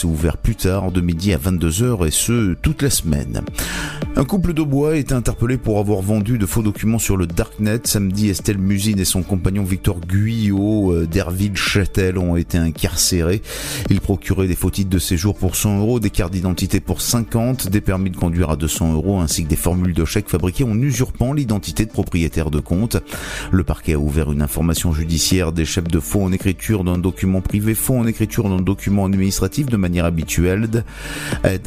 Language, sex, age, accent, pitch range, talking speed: French, male, 30-49, French, 85-105 Hz, 195 wpm